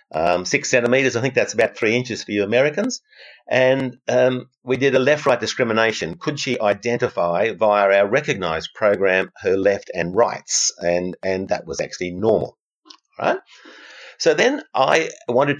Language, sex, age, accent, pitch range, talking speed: English, male, 50-69, Australian, 100-135 Hz, 165 wpm